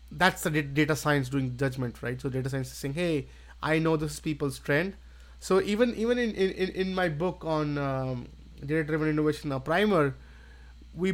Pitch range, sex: 140-175 Hz, male